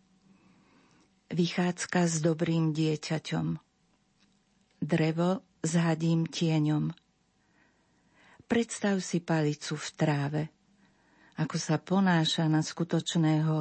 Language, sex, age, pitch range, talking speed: Slovak, female, 50-69, 160-185 Hz, 80 wpm